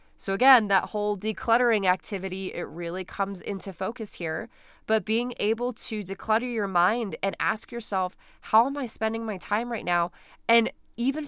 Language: English